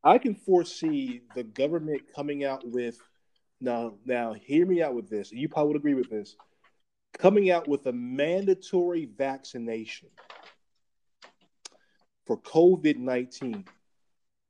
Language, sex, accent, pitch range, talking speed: English, male, American, 135-195 Hz, 125 wpm